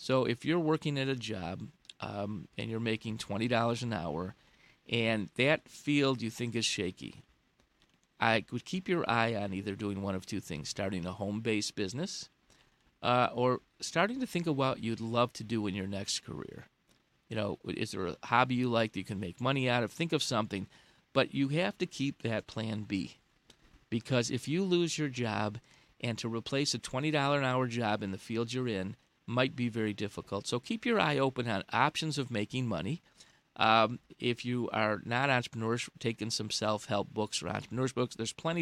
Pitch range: 105-135 Hz